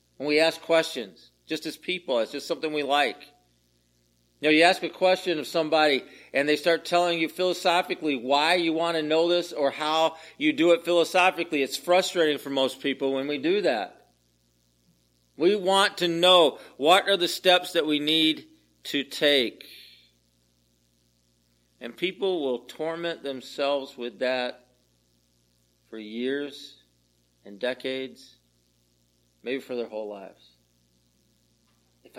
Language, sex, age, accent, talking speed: English, male, 50-69, American, 145 wpm